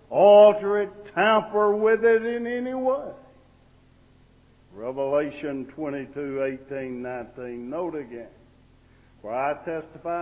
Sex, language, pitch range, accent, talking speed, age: male, English, 135-205 Hz, American, 100 wpm, 60-79